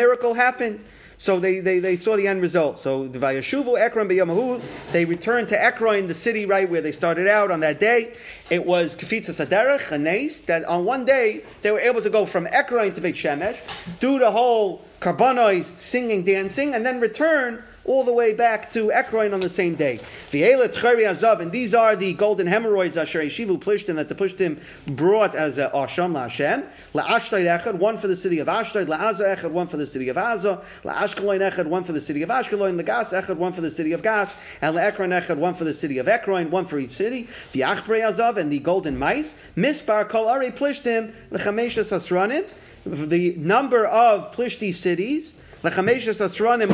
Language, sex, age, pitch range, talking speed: English, male, 40-59, 175-230 Hz, 195 wpm